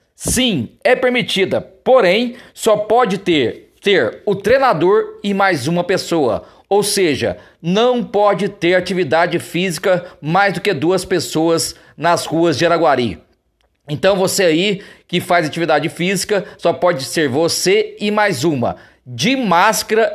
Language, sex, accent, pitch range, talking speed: Portuguese, male, Brazilian, 170-220 Hz, 135 wpm